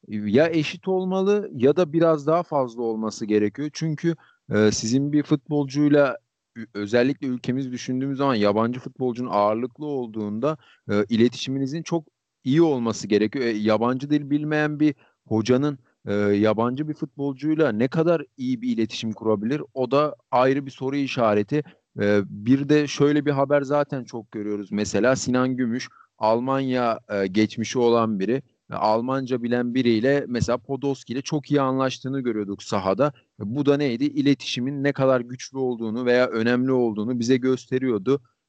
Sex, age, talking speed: male, 40-59, 145 wpm